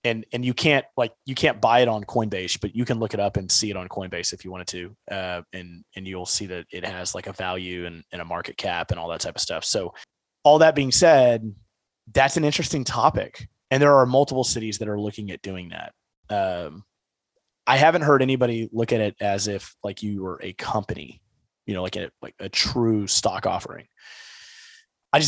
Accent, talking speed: American, 225 wpm